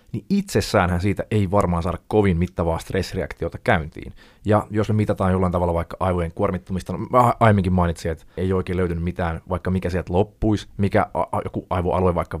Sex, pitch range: male, 90-110 Hz